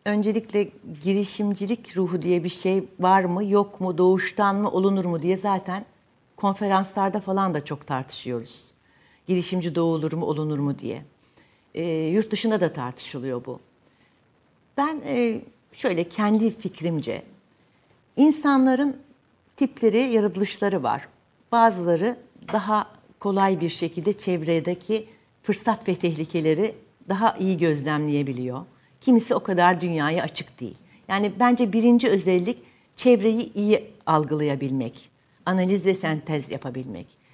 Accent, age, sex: native, 60-79, female